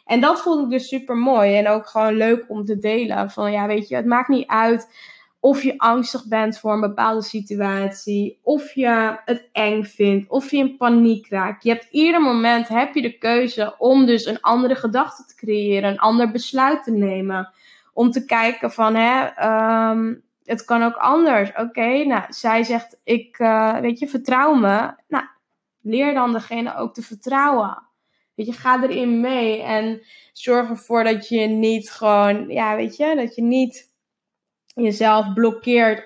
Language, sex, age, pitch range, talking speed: Dutch, female, 10-29, 215-250 Hz, 180 wpm